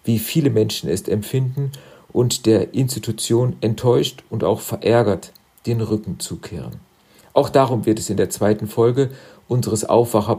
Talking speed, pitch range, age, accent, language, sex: 145 wpm, 110-135 Hz, 50-69, German, German, male